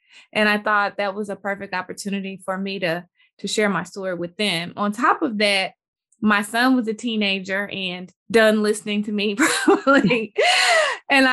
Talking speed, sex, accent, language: 175 wpm, female, American, English